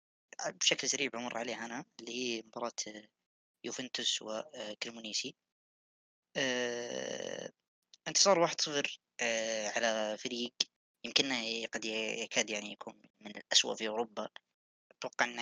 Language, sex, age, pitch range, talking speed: Arabic, female, 20-39, 105-130 Hz, 95 wpm